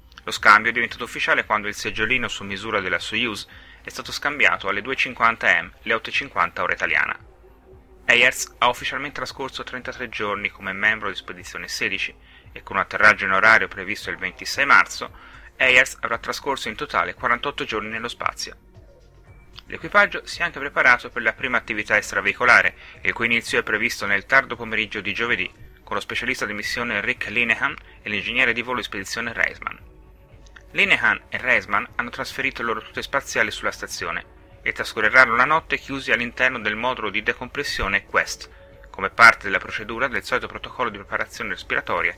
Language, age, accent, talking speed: Italian, 30-49, native, 170 wpm